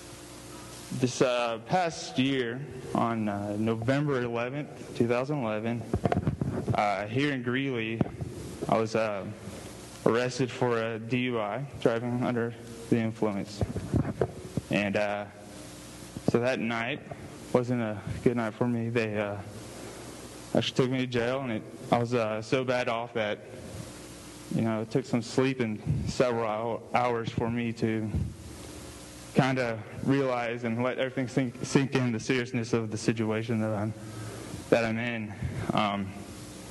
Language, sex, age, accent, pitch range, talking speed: English, male, 20-39, American, 105-120 Hz, 135 wpm